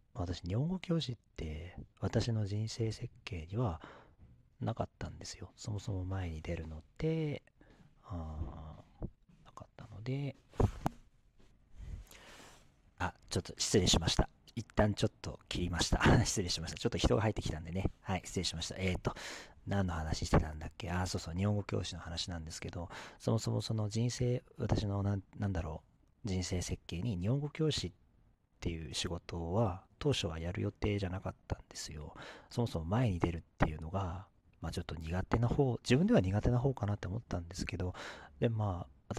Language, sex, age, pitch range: Japanese, male, 40-59, 85-110 Hz